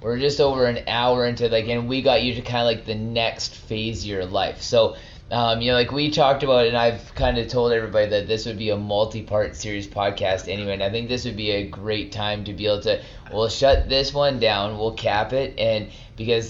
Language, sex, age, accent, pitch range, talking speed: English, male, 20-39, American, 100-120 Hz, 245 wpm